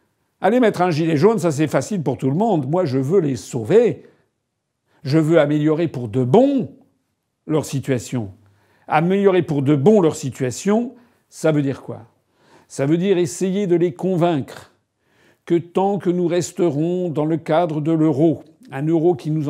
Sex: male